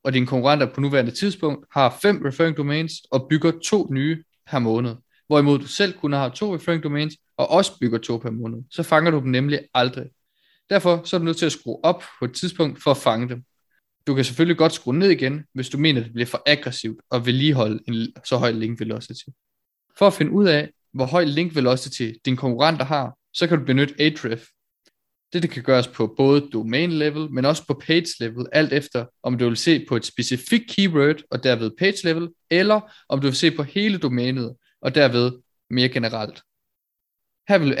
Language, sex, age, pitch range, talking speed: Danish, male, 20-39, 125-160 Hz, 205 wpm